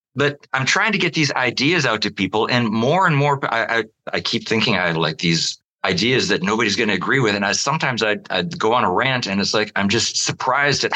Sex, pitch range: male, 100-150 Hz